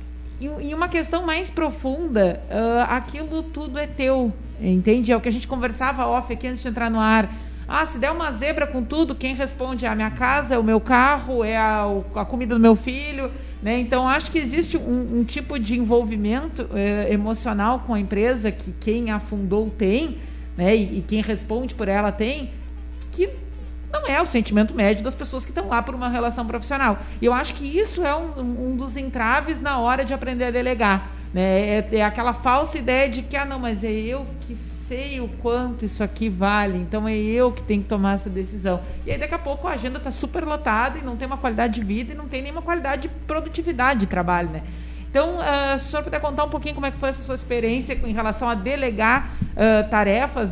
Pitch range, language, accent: 215-275 Hz, Portuguese, Brazilian